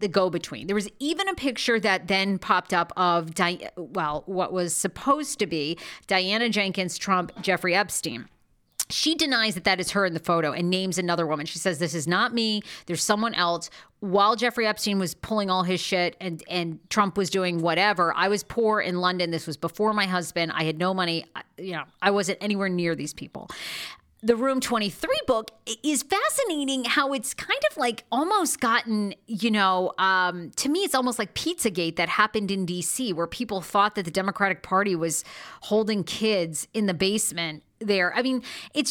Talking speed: 195 wpm